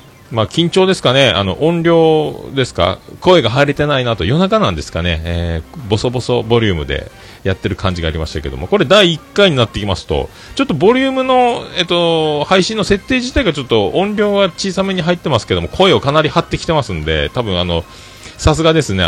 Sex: male